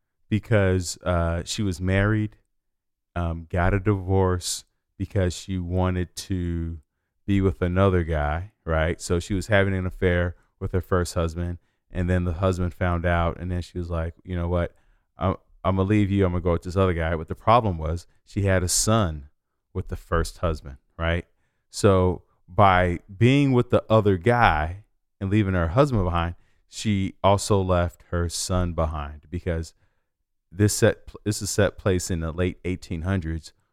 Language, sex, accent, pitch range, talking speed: English, male, American, 85-100 Hz, 175 wpm